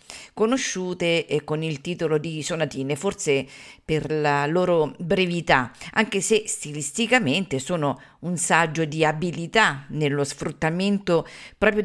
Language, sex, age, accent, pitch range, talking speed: Italian, female, 40-59, native, 150-190 Hz, 110 wpm